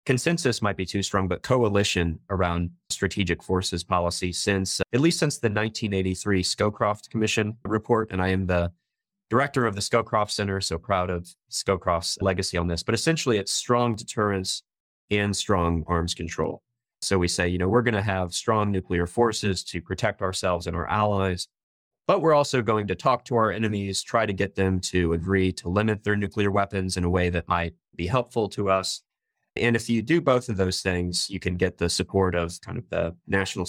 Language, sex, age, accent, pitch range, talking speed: English, male, 30-49, American, 90-110 Hz, 200 wpm